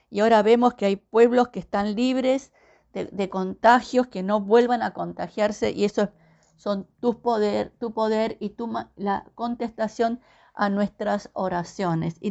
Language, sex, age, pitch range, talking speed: Spanish, female, 50-69, 195-245 Hz, 155 wpm